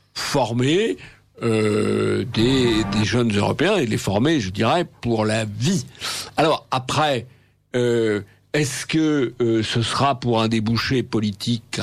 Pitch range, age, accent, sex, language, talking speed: 110-130 Hz, 60-79, French, male, French, 130 wpm